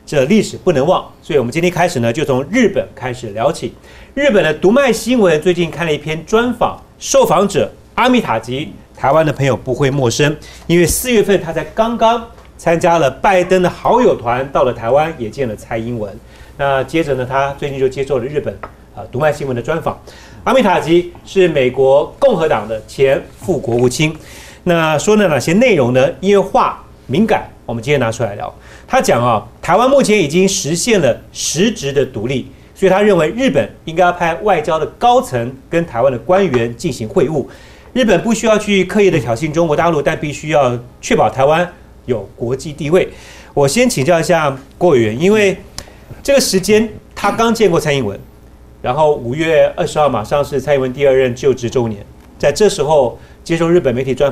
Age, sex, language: 40-59, male, Chinese